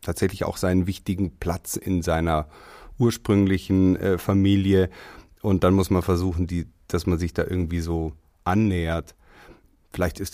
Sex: male